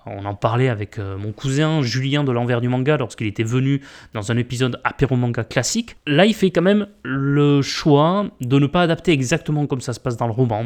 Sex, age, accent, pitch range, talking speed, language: male, 20-39, French, 120-160 Hz, 215 wpm, French